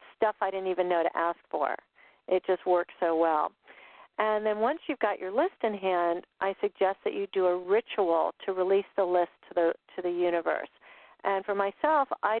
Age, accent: 50-69, American